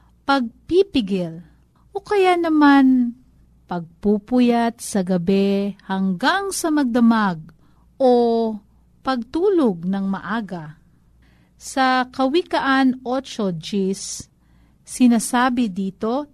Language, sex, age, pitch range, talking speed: Filipino, female, 50-69, 185-260 Hz, 75 wpm